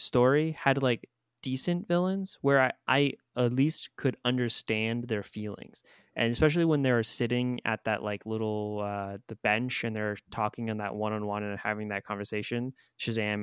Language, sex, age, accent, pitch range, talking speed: English, male, 20-39, American, 110-130 Hz, 165 wpm